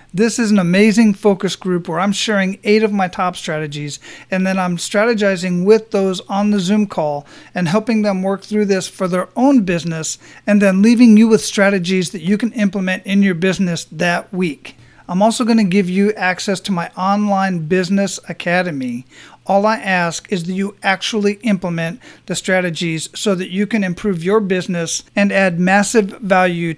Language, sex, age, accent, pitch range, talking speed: English, male, 40-59, American, 175-205 Hz, 185 wpm